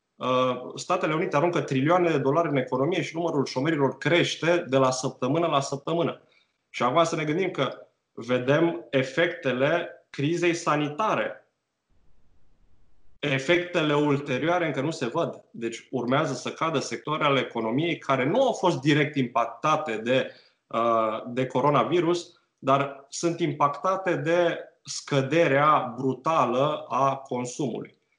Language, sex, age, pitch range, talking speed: Romanian, male, 20-39, 130-170 Hz, 120 wpm